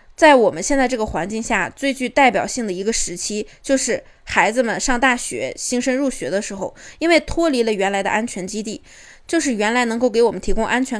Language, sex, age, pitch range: Chinese, female, 20-39, 205-275 Hz